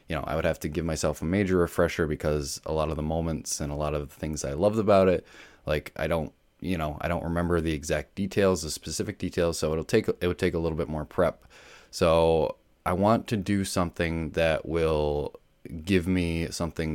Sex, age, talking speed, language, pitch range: male, 20-39, 220 wpm, English, 75-95 Hz